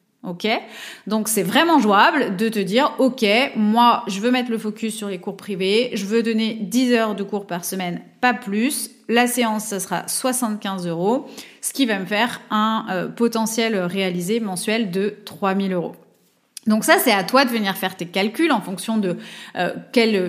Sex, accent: female, French